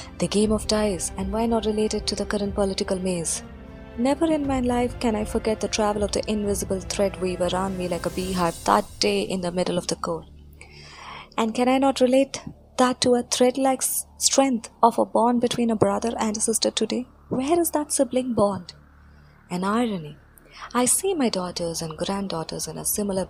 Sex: female